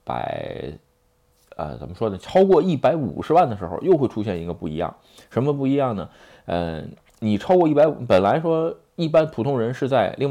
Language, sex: Chinese, male